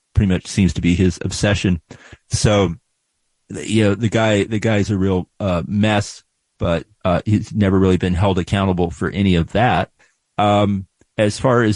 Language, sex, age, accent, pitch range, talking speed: English, male, 40-59, American, 95-110 Hz, 175 wpm